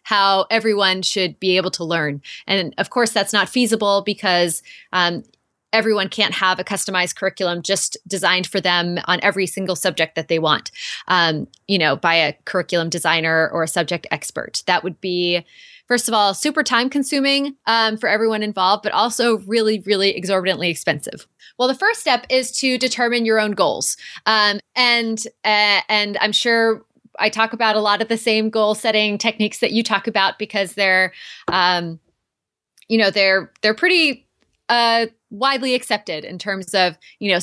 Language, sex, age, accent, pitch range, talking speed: English, female, 20-39, American, 185-225 Hz, 175 wpm